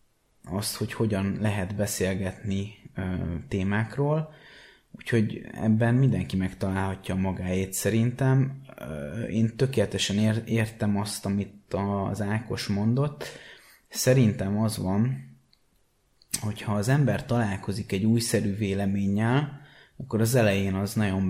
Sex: male